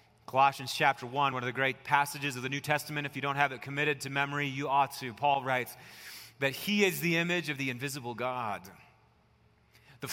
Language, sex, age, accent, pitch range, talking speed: English, male, 30-49, American, 150-195 Hz, 205 wpm